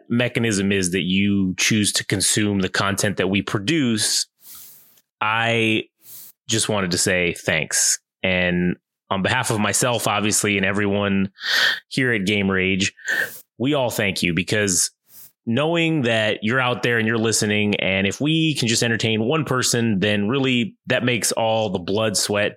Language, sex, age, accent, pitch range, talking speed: English, male, 30-49, American, 100-125 Hz, 155 wpm